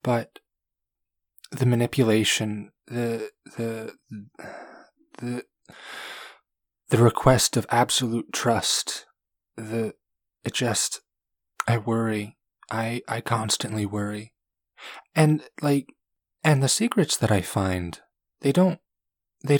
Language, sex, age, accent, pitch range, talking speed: English, male, 20-39, American, 95-125 Hz, 95 wpm